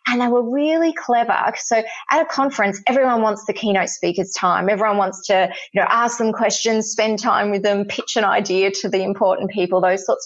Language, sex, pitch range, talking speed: English, female, 195-250 Hz, 210 wpm